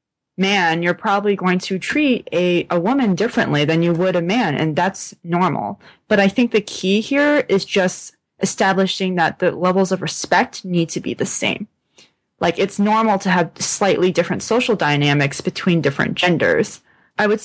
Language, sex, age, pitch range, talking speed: English, female, 20-39, 170-215 Hz, 175 wpm